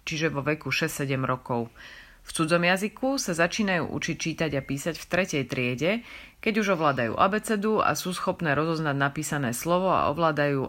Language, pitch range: Slovak, 140-185 Hz